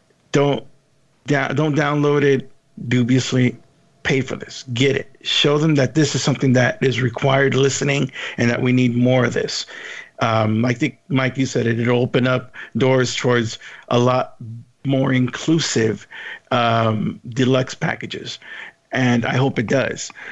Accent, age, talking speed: American, 50-69, 155 wpm